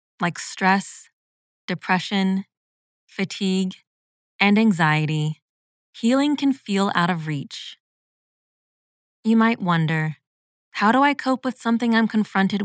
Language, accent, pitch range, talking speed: English, American, 165-215 Hz, 110 wpm